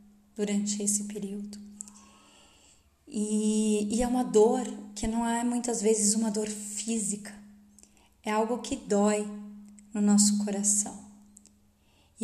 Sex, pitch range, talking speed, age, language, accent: female, 205-220 Hz, 120 wpm, 20-39, Portuguese, Brazilian